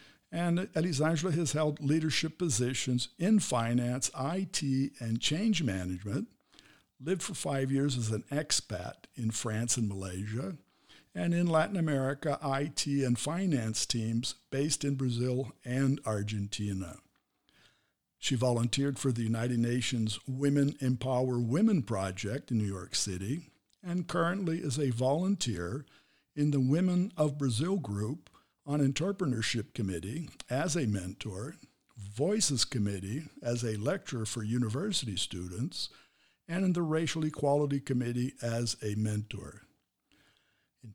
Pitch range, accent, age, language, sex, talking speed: 115-155 Hz, American, 60-79, English, male, 125 wpm